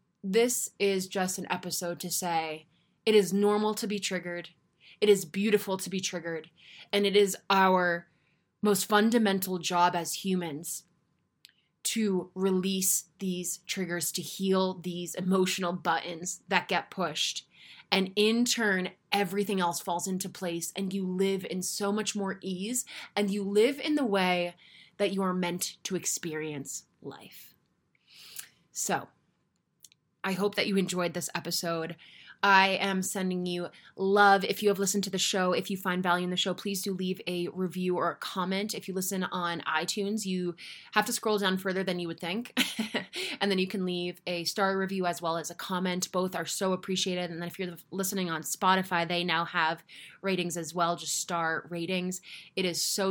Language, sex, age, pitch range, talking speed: English, female, 20-39, 175-195 Hz, 175 wpm